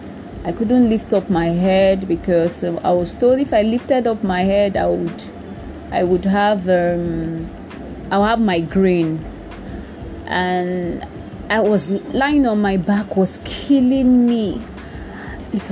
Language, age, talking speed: English, 20-39, 145 wpm